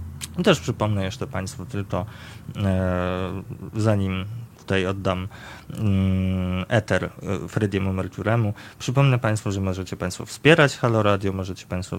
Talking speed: 110 wpm